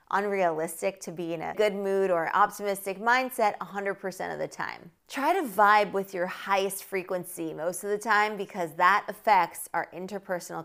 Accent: American